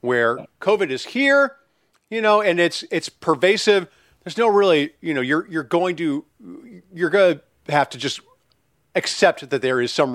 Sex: male